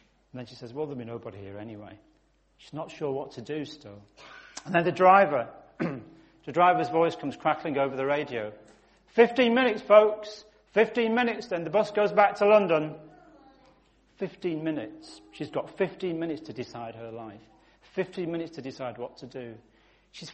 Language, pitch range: English, 135-205 Hz